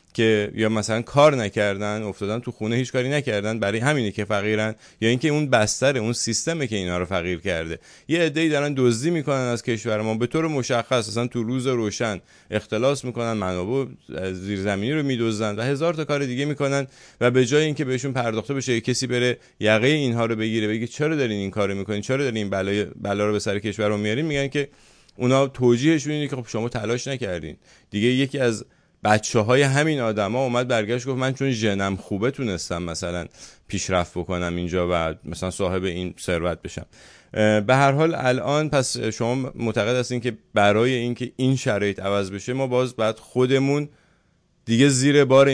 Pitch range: 105-130 Hz